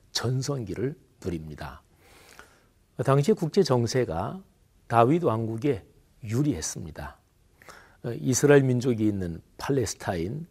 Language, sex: Korean, male